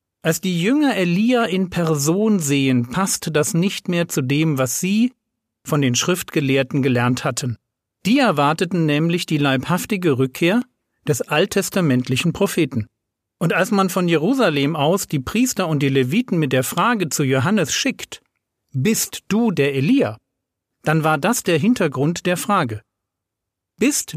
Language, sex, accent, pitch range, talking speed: German, male, German, 135-190 Hz, 145 wpm